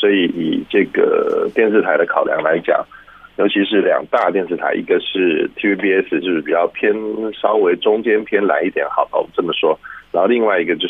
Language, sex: Chinese, male